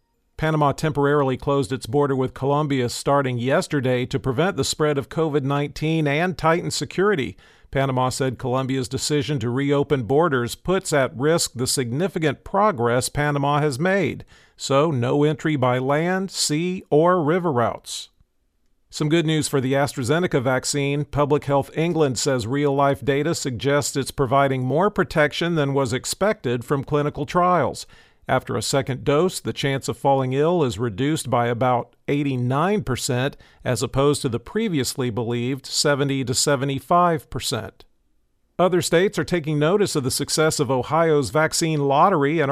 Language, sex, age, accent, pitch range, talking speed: English, male, 50-69, American, 130-155 Hz, 150 wpm